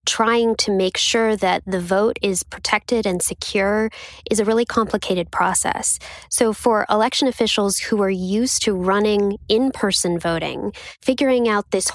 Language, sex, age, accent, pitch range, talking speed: English, female, 10-29, American, 190-225 Hz, 150 wpm